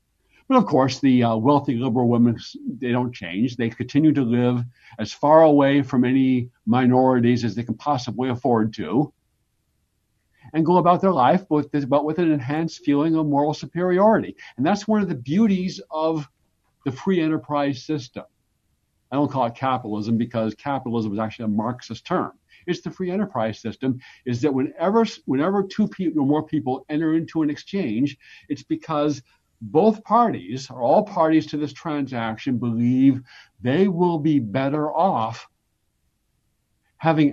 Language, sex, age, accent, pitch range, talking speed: English, male, 60-79, American, 125-160 Hz, 160 wpm